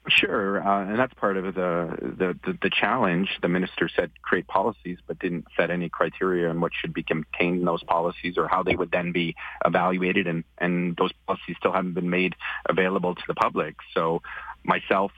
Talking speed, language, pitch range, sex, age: 200 wpm, English, 85-90 Hz, male, 40-59